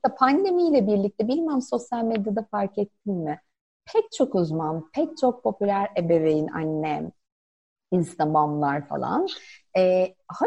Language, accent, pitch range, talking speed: Turkish, native, 170-270 Hz, 115 wpm